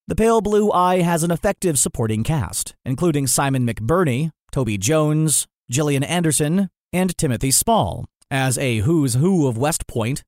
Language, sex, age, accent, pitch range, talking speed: English, male, 30-49, American, 125-160 Hz, 150 wpm